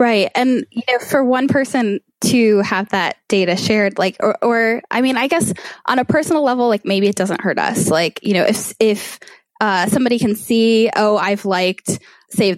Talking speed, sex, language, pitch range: 200 wpm, female, English, 180-210 Hz